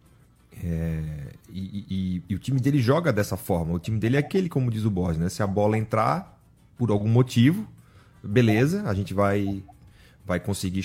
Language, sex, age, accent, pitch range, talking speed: Portuguese, male, 30-49, Brazilian, 95-120 Hz, 175 wpm